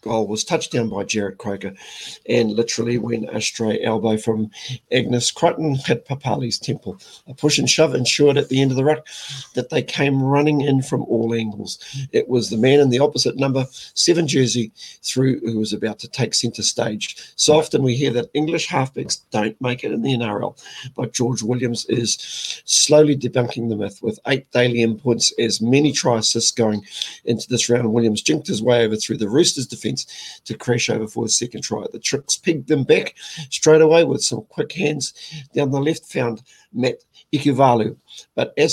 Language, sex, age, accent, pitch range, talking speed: English, male, 50-69, Australian, 115-140 Hz, 190 wpm